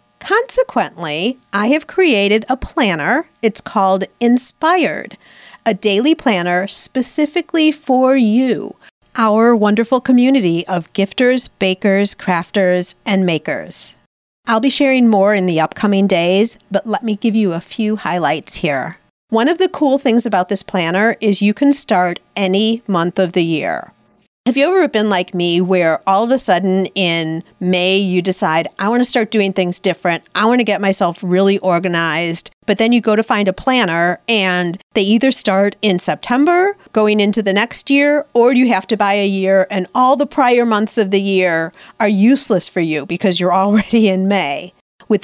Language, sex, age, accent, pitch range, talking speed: English, female, 40-59, American, 185-245 Hz, 175 wpm